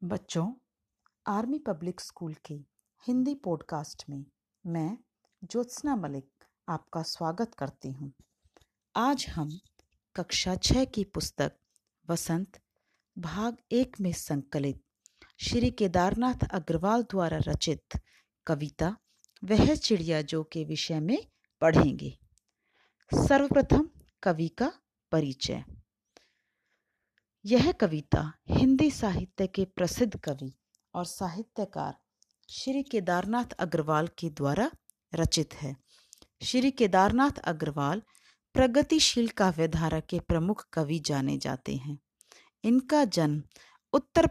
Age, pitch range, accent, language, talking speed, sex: 40-59, 155-235 Hz, native, Hindi, 105 wpm, female